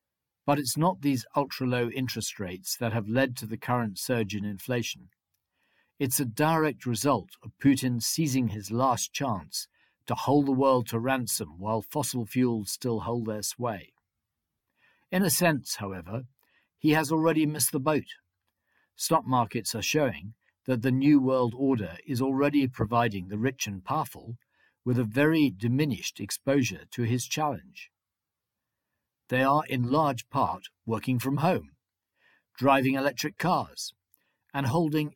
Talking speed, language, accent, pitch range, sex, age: 145 wpm, English, British, 115-140 Hz, male, 50-69